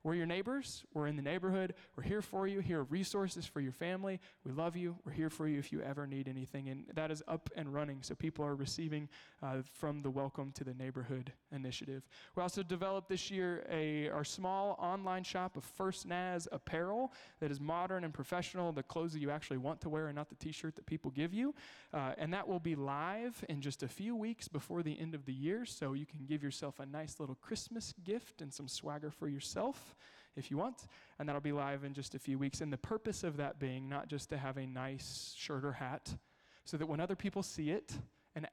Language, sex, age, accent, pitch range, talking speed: English, male, 20-39, American, 140-180 Hz, 230 wpm